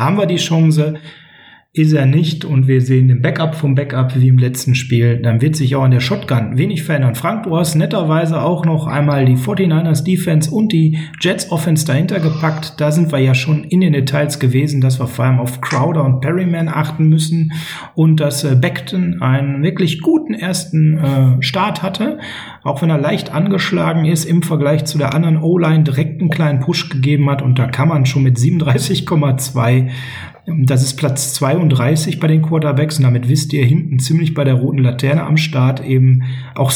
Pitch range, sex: 140-170 Hz, male